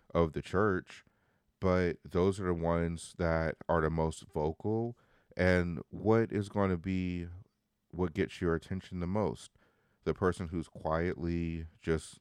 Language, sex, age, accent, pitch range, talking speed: English, male, 30-49, American, 80-100 Hz, 145 wpm